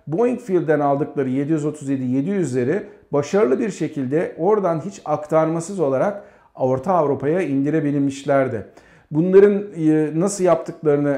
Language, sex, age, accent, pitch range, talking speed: Turkish, male, 50-69, native, 140-185 Hz, 90 wpm